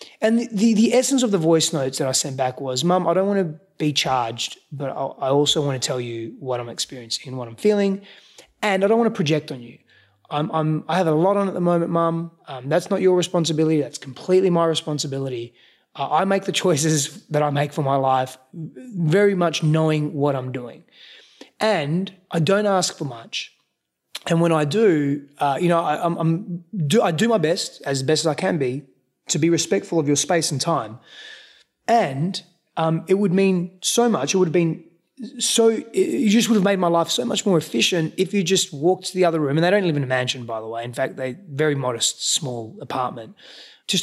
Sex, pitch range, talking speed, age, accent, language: male, 145-200 Hz, 215 wpm, 20-39, Australian, English